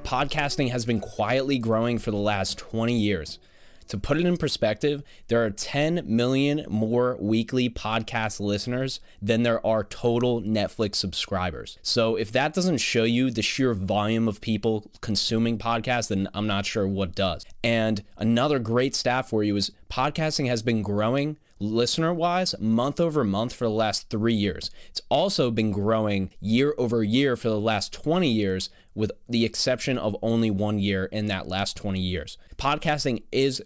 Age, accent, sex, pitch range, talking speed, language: 20-39, American, male, 105-130 Hz, 170 wpm, English